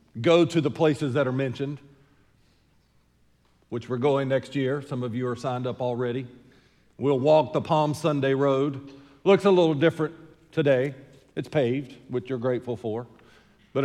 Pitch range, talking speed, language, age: 130-170 Hz, 160 wpm, English, 50-69